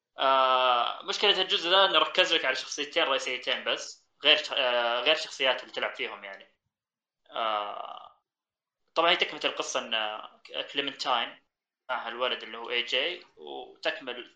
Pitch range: 120-170 Hz